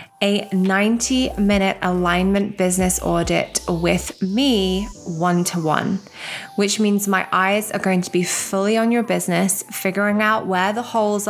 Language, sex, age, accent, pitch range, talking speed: English, female, 20-39, British, 170-200 Hz, 135 wpm